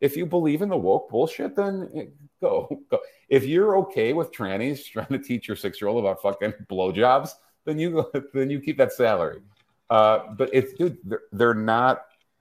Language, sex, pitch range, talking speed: English, male, 95-135 Hz, 195 wpm